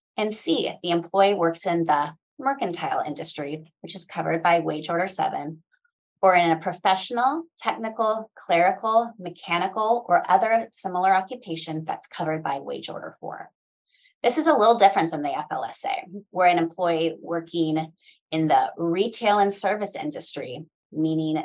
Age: 30-49